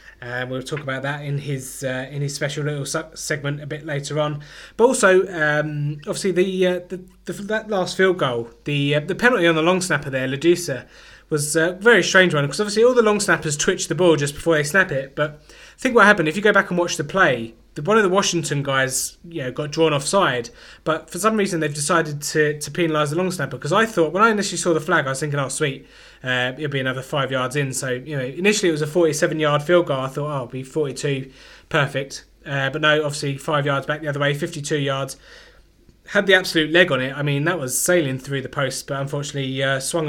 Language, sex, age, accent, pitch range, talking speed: English, male, 20-39, British, 135-170 Hz, 245 wpm